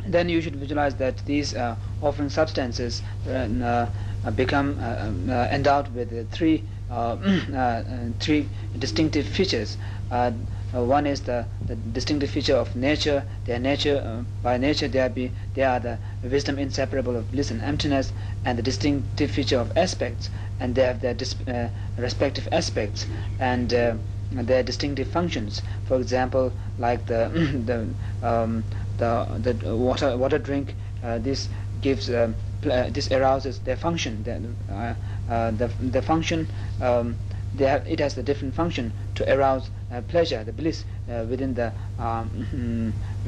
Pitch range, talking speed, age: 100-130 Hz, 160 wpm, 50-69